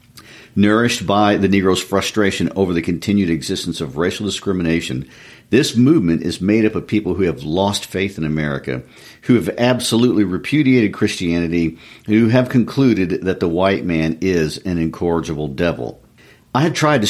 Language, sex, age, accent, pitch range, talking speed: English, male, 50-69, American, 80-110 Hz, 160 wpm